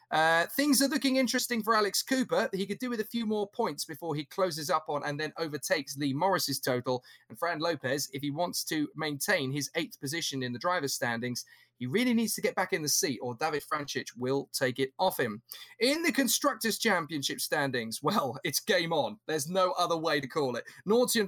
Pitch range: 135-190 Hz